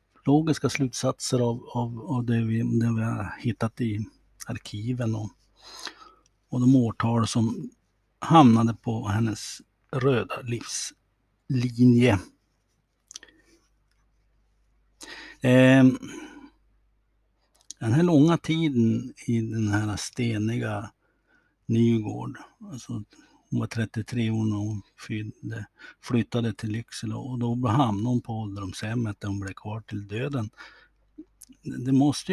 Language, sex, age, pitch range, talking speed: Swedish, male, 60-79, 110-130 Hz, 100 wpm